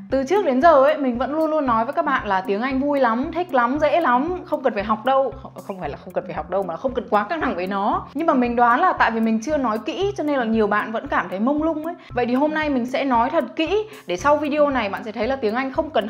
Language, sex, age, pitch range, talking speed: Vietnamese, female, 20-39, 215-300 Hz, 320 wpm